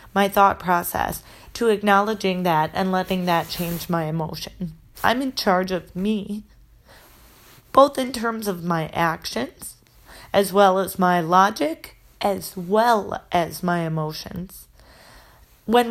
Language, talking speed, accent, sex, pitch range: English, 130 wpm, American, female, 180-225 Hz